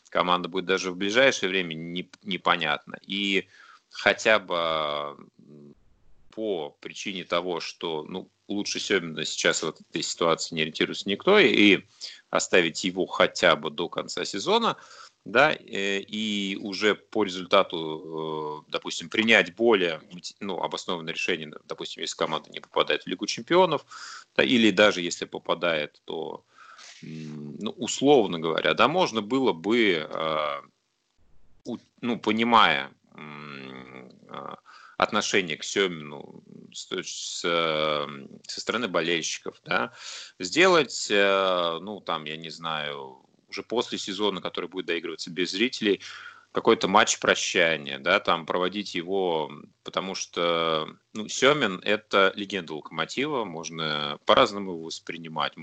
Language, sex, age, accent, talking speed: Russian, male, 30-49, native, 120 wpm